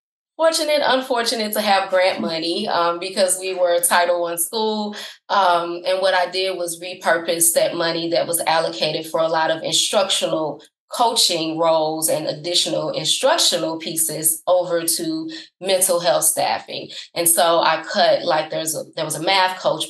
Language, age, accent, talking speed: English, 20-39, American, 160 wpm